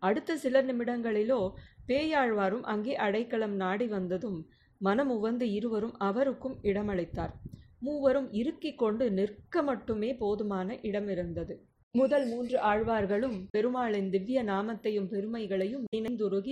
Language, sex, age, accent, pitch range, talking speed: Tamil, female, 30-49, native, 195-250 Hz, 100 wpm